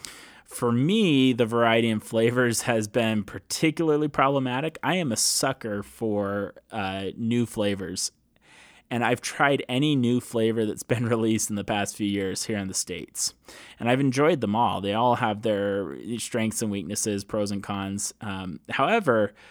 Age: 20-39